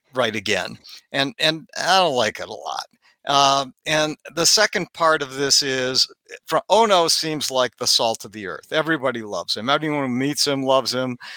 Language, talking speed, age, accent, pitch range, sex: English, 190 wpm, 60-79, American, 125-155 Hz, male